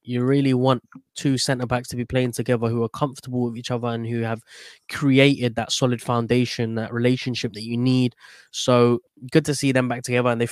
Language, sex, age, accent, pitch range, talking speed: English, male, 20-39, British, 120-140 Hz, 205 wpm